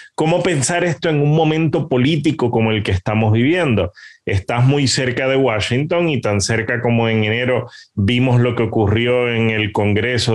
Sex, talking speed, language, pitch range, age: male, 175 wpm, English, 115-140 Hz, 30-49